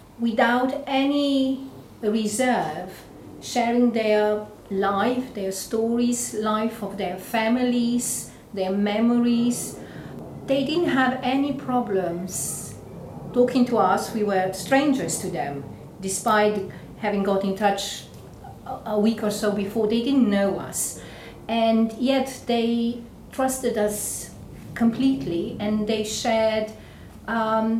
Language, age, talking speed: English, 40-59, 110 wpm